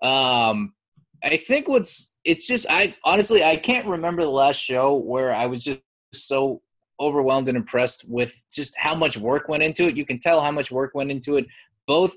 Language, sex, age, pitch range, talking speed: English, male, 20-39, 120-155 Hz, 195 wpm